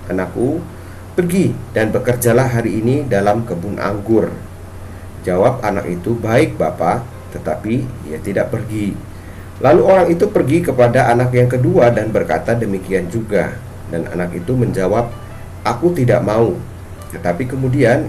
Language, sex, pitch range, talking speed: Indonesian, male, 100-135 Hz, 130 wpm